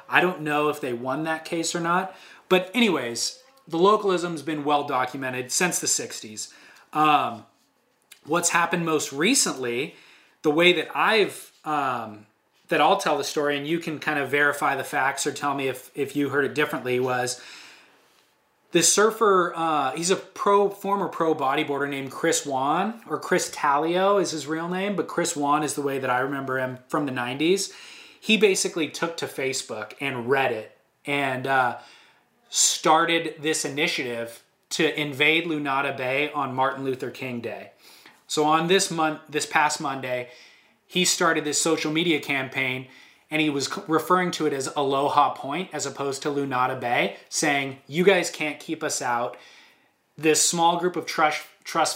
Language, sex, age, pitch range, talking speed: English, male, 20-39, 135-170 Hz, 170 wpm